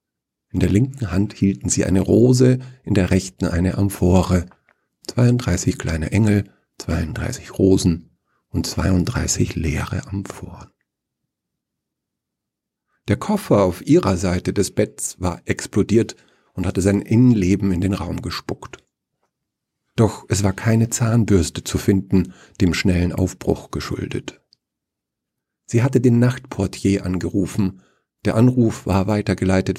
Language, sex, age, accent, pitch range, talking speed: German, male, 50-69, German, 90-115 Hz, 120 wpm